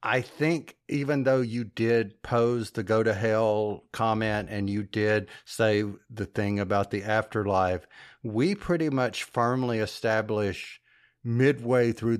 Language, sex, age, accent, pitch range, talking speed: English, male, 50-69, American, 105-125 Hz, 130 wpm